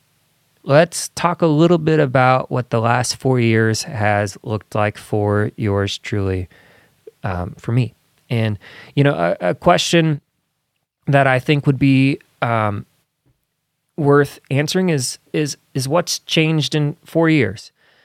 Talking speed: 140 wpm